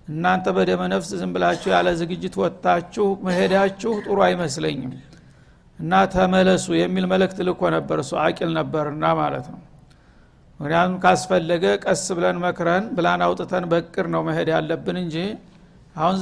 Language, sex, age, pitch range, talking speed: Amharic, male, 60-79, 170-185 Hz, 120 wpm